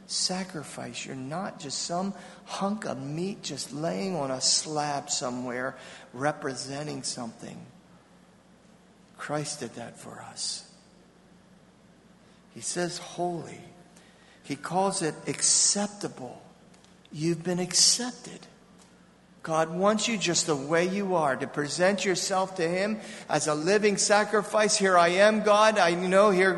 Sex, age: male, 50-69